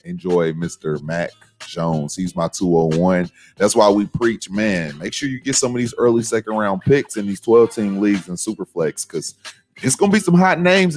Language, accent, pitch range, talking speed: English, American, 95-125 Hz, 200 wpm